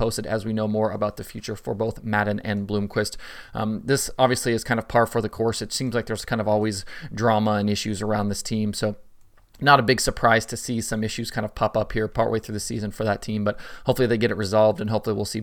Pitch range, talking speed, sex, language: 105-120 Hz, 260 wpm, male, English